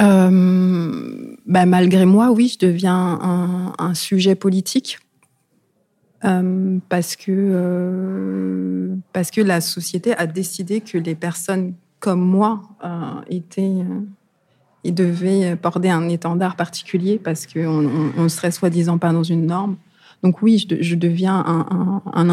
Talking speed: 150 wpm